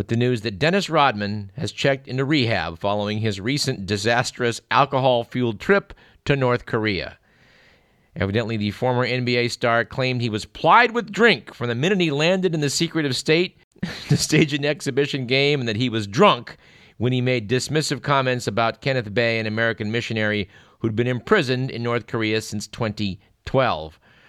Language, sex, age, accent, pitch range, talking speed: English, male, 50-69, American, 110-150 Hz, 170 wpm